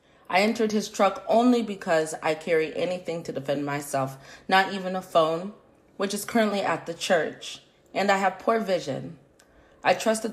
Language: English